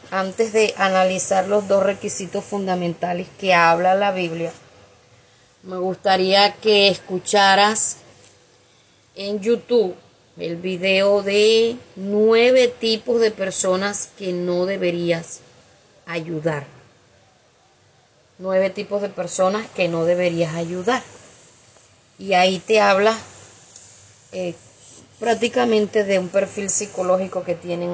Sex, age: female, 20-39